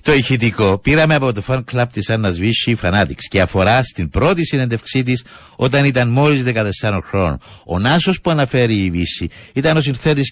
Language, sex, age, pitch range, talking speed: Greek, male, 60-79, 90-130 Hz, 175 wpm